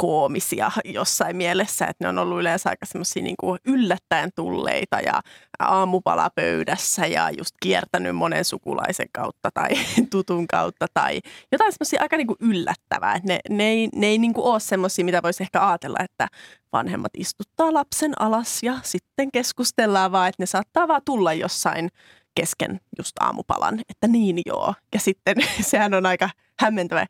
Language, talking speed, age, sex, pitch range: Finnish, 150 wpm, 20-39, female, 180-240 Hz